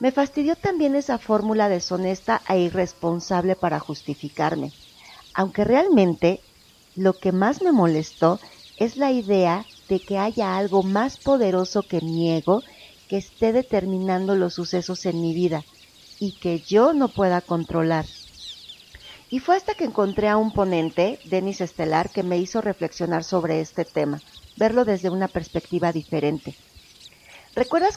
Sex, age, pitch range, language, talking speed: female, 50-69, 170-210 Hz, Spanish, 140 wpm